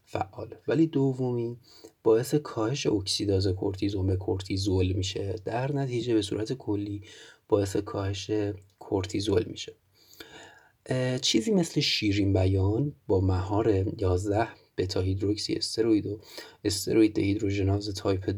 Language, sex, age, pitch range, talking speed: Persian, male, 30-49, 95-110 Hz, 110 wpm